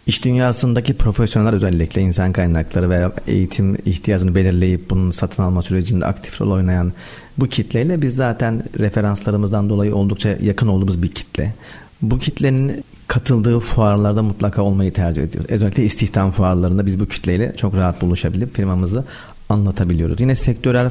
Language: Turkish